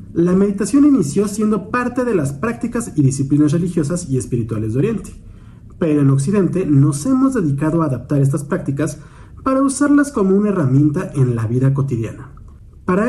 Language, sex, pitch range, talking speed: Spanish, male, 130-185 Hz, 160 wpm